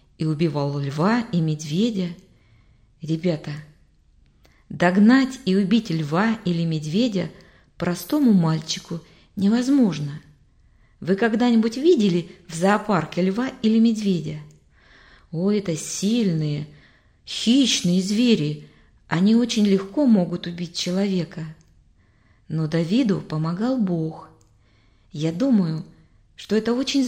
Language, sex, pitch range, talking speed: Russian, female, 150-215 Hz, 95 wpm